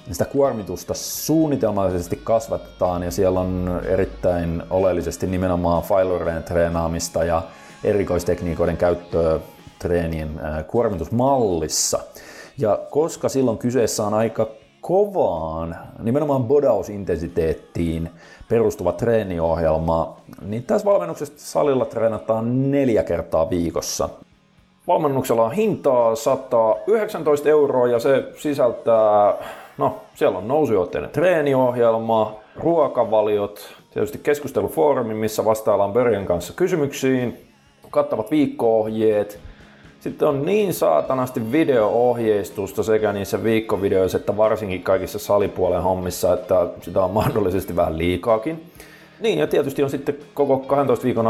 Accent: native